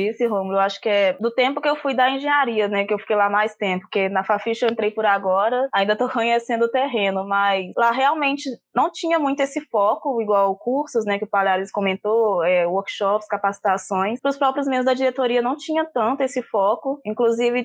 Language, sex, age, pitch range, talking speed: Portuguese, female, 20-39, 200-250 Hz, 205 wpm